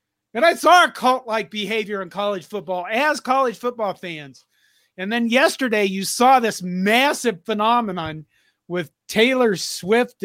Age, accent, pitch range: 40-59, American, 150-220 Hz